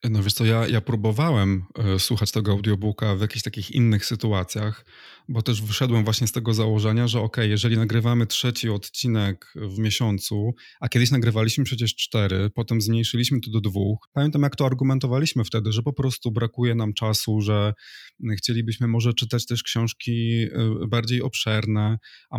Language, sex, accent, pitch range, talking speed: Polish, male, native, 105-120 Hz, 160 wpm